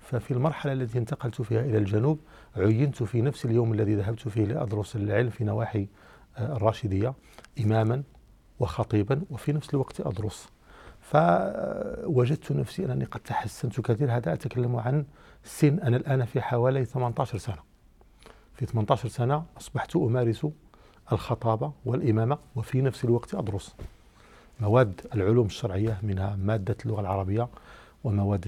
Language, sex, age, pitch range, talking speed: Arabic, male, 50-69, 110-135 Hz, 125 wpm